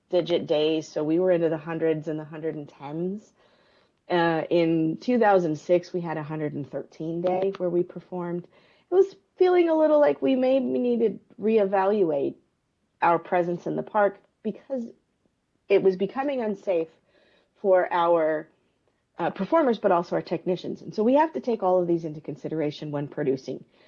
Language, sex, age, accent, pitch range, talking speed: English, female, 40-59, American, 155-195 Hz, 160 wpm